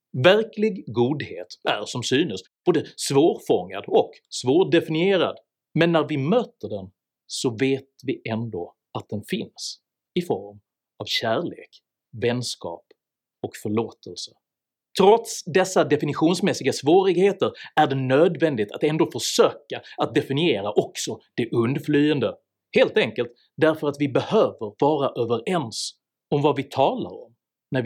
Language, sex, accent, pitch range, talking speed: Swedish, male, native, 120-185 Hz, 125 wpm